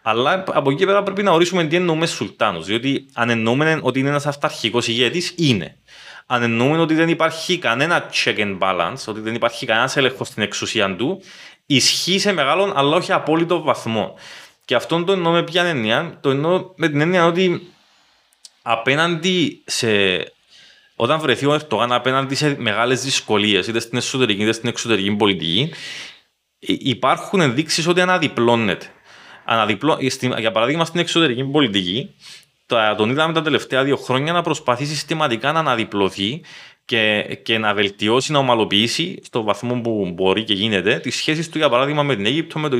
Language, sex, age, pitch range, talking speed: Greek, male, 20-39, 115-165 Hz, 160 wpm